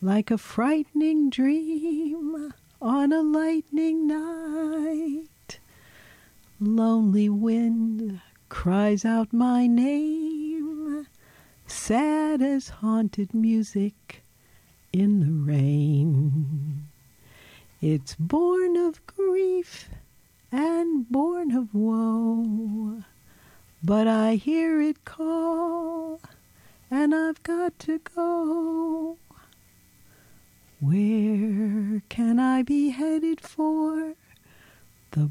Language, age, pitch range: English, 50-69, 210-310 Hz